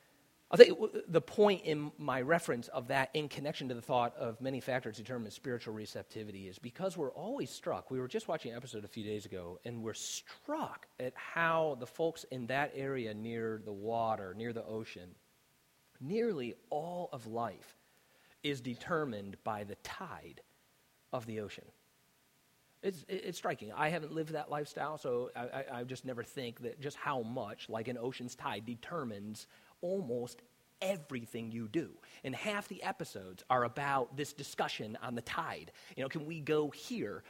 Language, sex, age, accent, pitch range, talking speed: English, male, 40-59, American, 115-170 Hz, 175 wpm